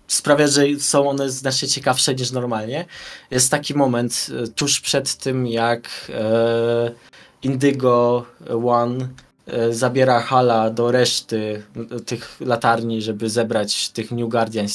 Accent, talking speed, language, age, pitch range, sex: native, 115 wpm, Polish, 20-39, 120-145 Hz, male